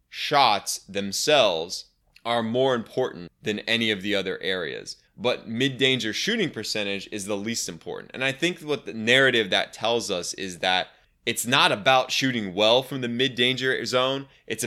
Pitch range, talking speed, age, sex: 105-130 Hz, 165 wpm, 20-39, male